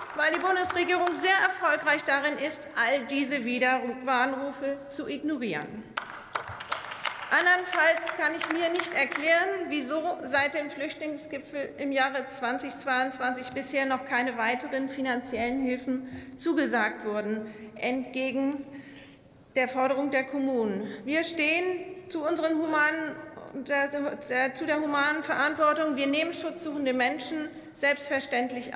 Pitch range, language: 260-315 Hz, German